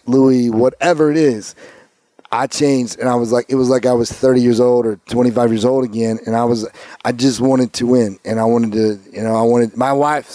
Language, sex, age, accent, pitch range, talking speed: English, male, 30-49, American, 120-140 Hz, 240 wpm